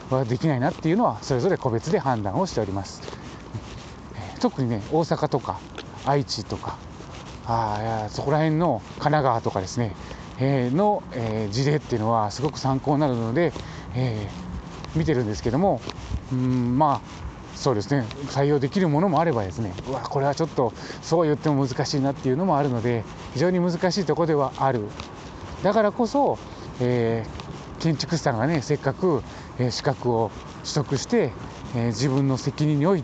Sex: male